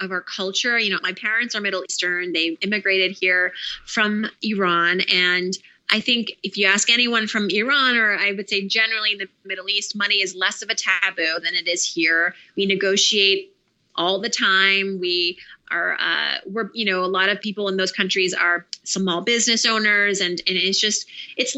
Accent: American